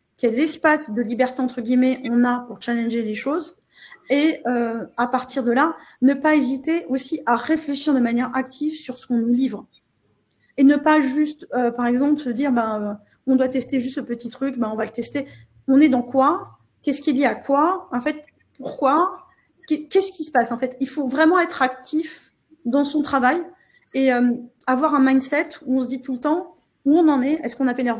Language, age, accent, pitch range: French, 30-49, French, 235-285 Hz